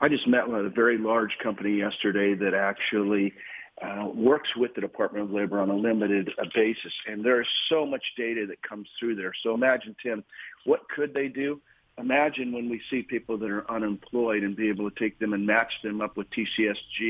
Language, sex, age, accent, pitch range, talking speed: English, male, 50-69, American, 105-120 Hz, 210 wpm